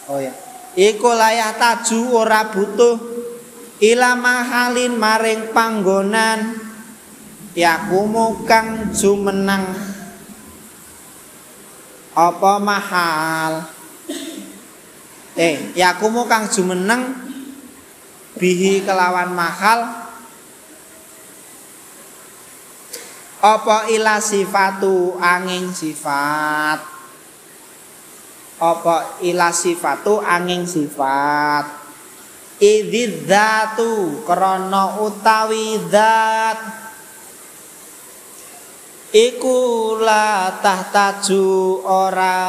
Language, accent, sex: Indonesian, native, male